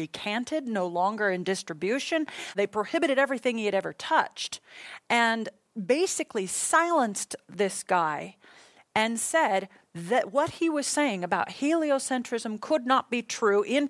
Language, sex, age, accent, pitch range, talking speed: English, female, 40-59, American, 195-250 Hz, 135 wpm